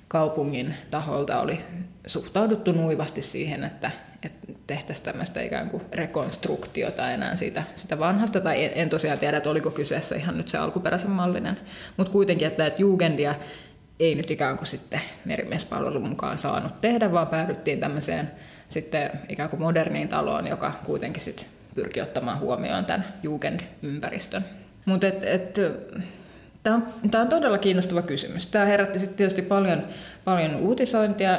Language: Finnish